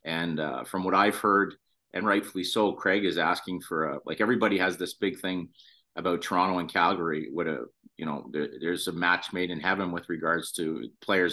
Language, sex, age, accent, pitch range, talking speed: English, male, 40-59, American, 85-100 Hz, 205 wpm